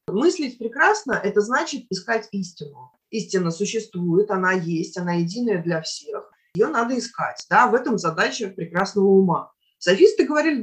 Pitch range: 175-265 Hz